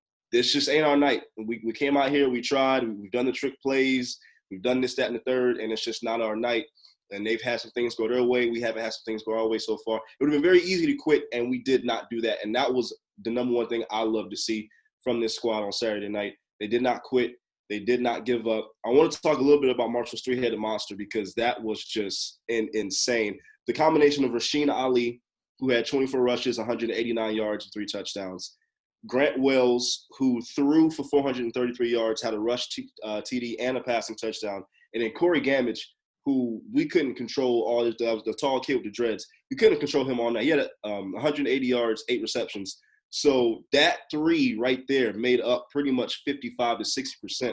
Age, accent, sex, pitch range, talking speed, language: 20-39, American, male, 115-140 Hz, 220 wpm, English